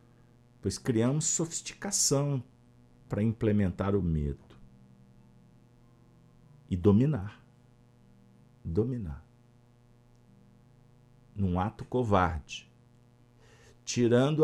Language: Portuguese